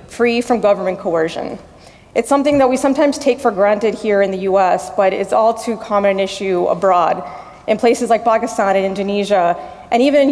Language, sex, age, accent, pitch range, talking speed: English, female, 30-49, American, 195-245 Hz, 190 wpm